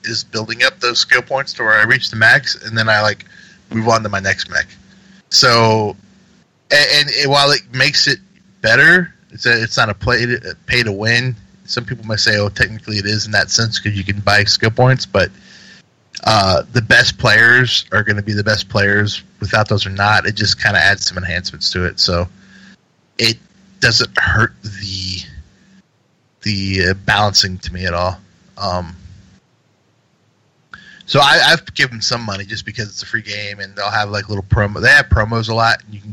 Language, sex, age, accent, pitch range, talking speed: English, male, 20-39, American, 95-115 Hz, 205 wpm